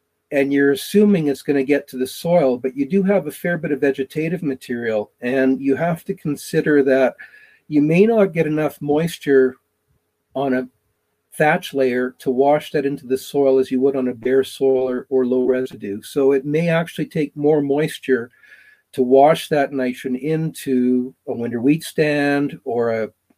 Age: 50-69